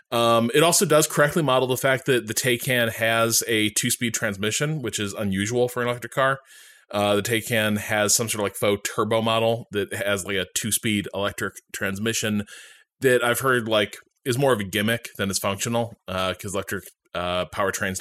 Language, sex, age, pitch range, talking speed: English, male, 20-39, 100-125 Hz, 190 wpm